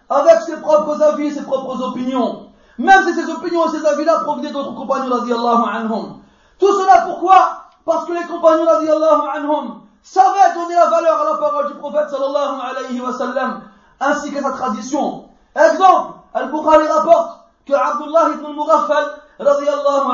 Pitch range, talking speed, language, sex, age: 275-330 Hz, 155 wpm, French, male, 40-59